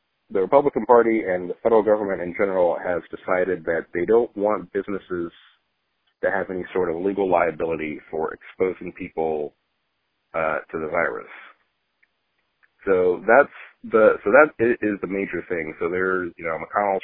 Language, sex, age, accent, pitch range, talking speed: English, male, 40-59, American, 90-110 Hz, 155 wpm